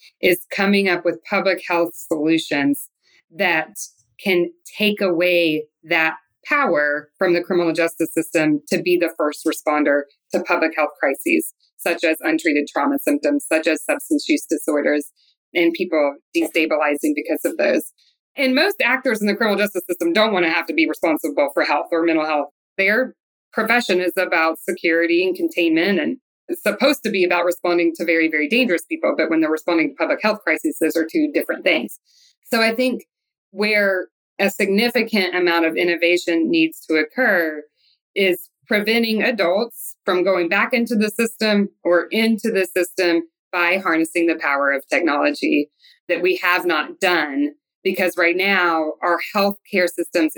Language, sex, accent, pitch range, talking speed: English, female, American, 160-215 Hz, 160 wpm